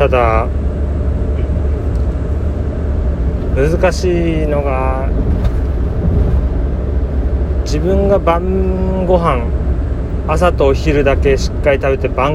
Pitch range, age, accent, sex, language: 75-100 Hz, 40-59, native, male, Japanese